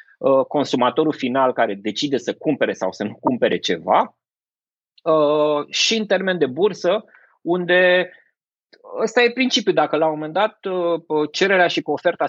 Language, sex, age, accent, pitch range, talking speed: Romanian, male, 20-39, native, 145-215 Hz, 135 wpm